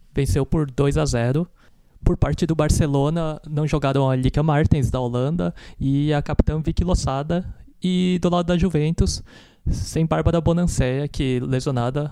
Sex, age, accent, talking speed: male, 20-39, Brazilian, 155 wpm